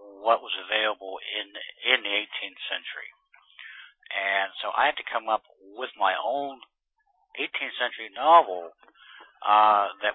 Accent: American